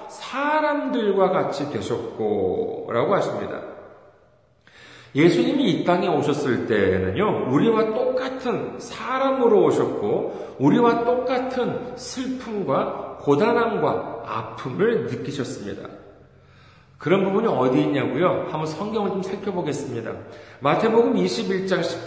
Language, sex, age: Korean, male, 40-59